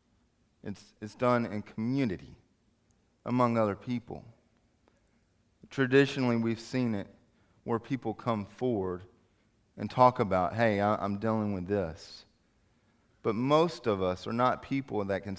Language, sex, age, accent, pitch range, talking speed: English, male, 30-49, American, 90-115 Hz, 135 wpm